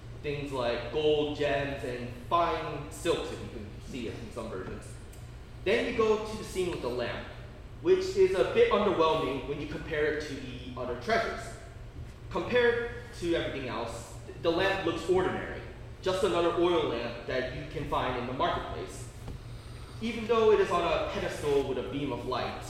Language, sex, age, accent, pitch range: Korean, male, 20-39, American, 120-170 Hz